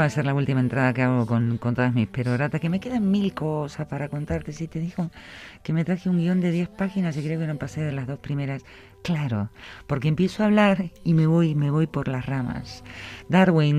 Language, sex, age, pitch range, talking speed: Spanish, female, 50-69, 125-165 Hz, 235 wpm